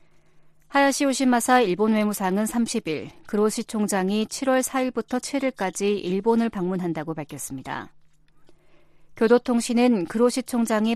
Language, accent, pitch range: Korean, native, 170-240 Hz